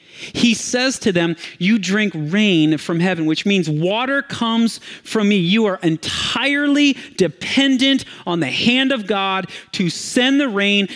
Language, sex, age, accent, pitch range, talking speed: English, male, 30-49, American, 175-230 Hz, 155 wpm